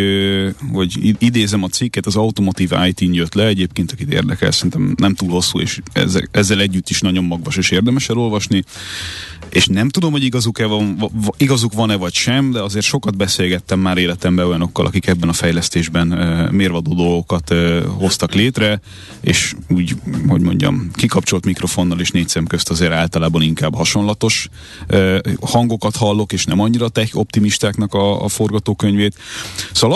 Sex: male